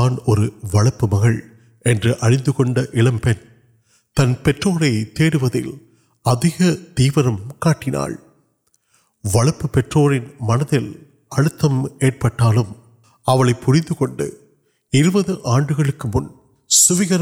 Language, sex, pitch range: Urdu, male, 120-150 Hz